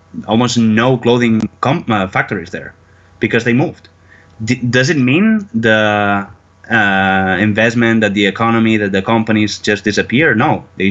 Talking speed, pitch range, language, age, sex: 150 wpm, 100-120 Hz, English, 20-39, male